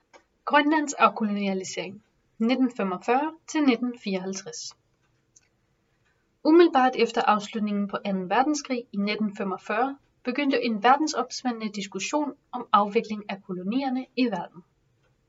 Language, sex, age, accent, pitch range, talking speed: English, female, 30-49, Danish, 205-260 Hz, 80 wpm